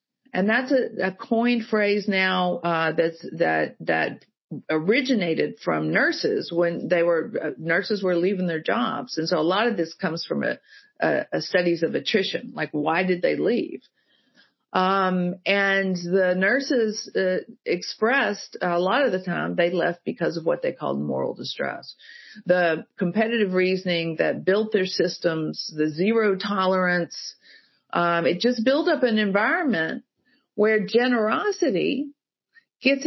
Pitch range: 175-240 Hz